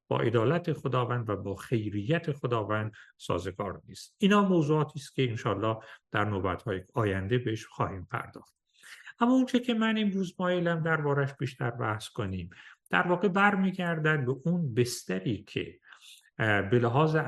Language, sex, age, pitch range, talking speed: Persian, male, 50-69, 115-165 Hz, 135 wpm